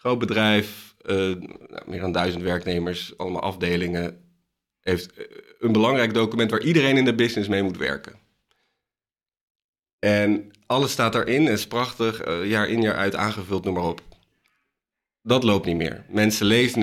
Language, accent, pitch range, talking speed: Dutch, Dutch, 90-110 Hz, 155 wpm